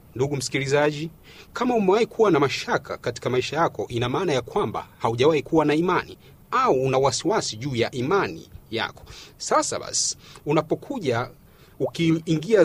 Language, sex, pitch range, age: Swahili, male, 140-185 Hz, 40-59